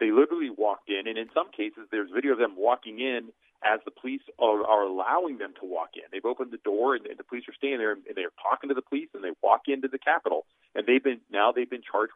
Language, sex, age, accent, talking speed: English, male, 40-59, American, 265 wpm